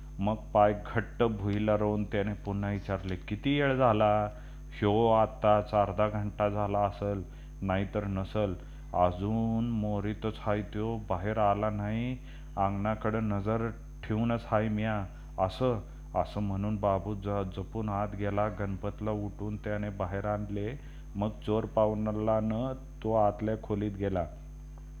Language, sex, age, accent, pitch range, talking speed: Marathi, male, 30-49, native, 100-110 Hz, 100 wpm